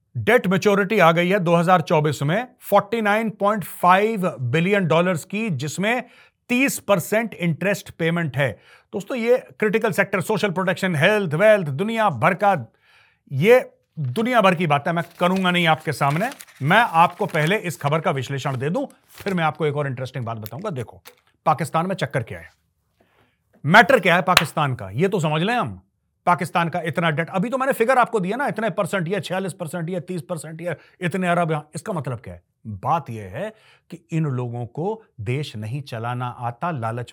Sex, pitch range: male, 125-195 Hz